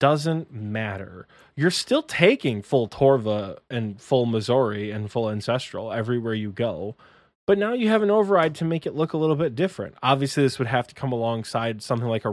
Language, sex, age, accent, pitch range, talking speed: English, male, 20-39, American, 115-150 Hz, 195 wpm